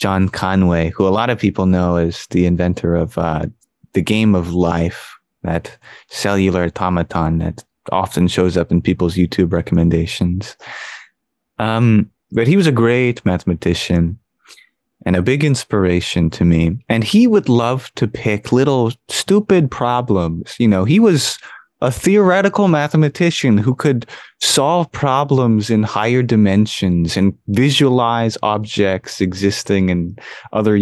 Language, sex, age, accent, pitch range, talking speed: English, male, 20-39, American, 90-120 Hz, 135 wpm